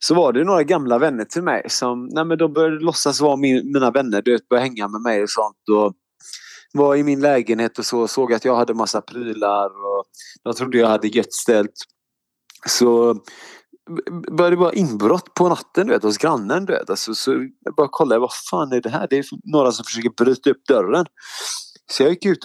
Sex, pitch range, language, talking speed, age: male, 105-140 Hz, Swedish, 220 wpm, 30-49